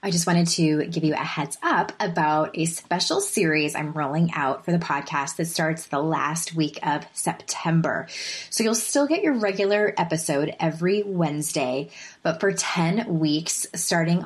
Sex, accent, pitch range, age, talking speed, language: female, American, 155-205 Hz, 20-39, 170 wpm, English